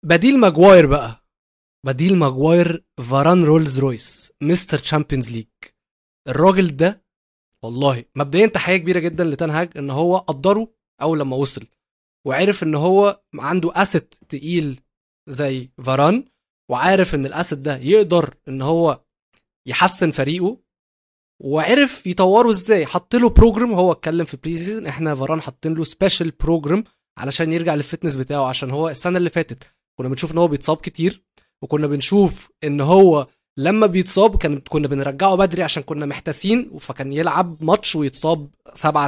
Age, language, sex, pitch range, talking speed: 20-39, Arabic, male, 140-180 Hz, 140 wpm